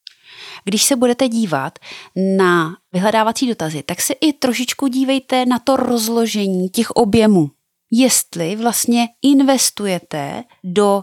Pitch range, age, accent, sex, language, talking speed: 175-220 Hz, 30-49, native, female, Czech, 115 wpm